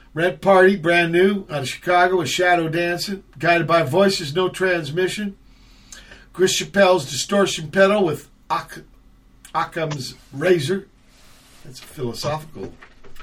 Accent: American